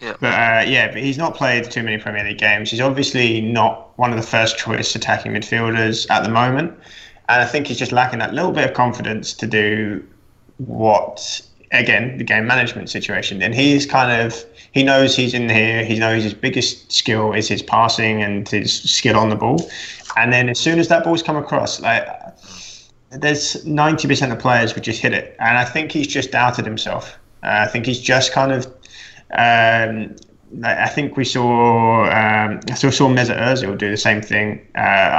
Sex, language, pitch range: male, English, 110-125 Hz